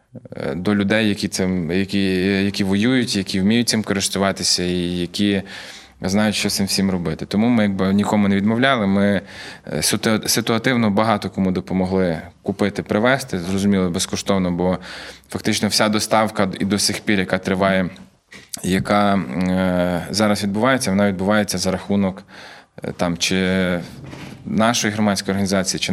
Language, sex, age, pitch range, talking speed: Ukrainian, male, 20-39, 95-105 Hz, 135 wpm